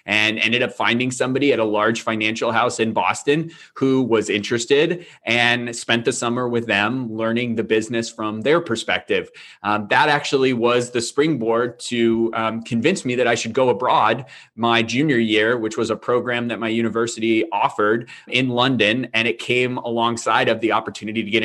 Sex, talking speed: male, 180 wpm